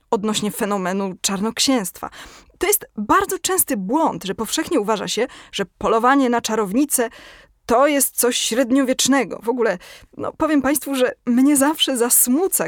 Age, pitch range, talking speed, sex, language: 20-39, 220-295 Hz, 135 wpm, female, Polish